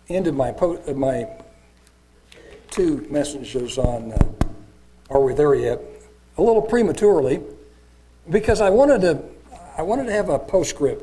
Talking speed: 135 wpm